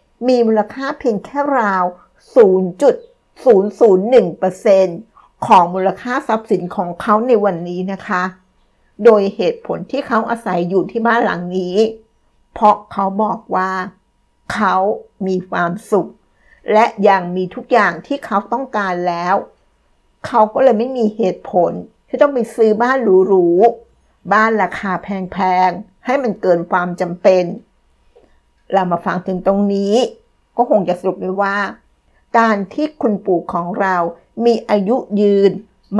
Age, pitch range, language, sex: 60-79, 185-230 Hz, Thai, female